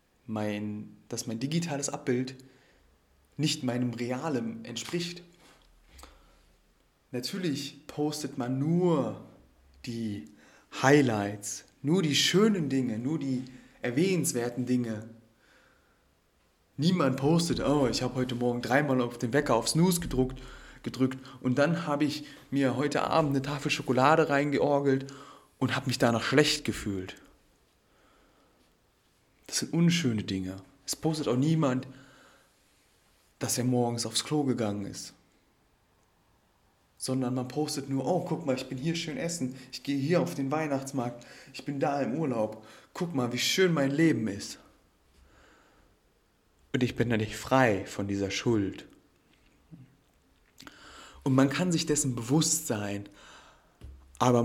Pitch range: 115-145 Hz